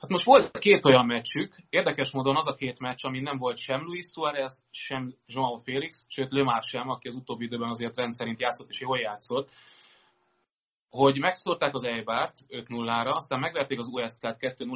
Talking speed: 180 wpm